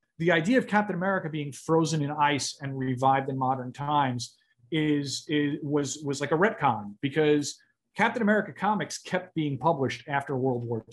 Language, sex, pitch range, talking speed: English, male, 135-190 Hz, 175 wpm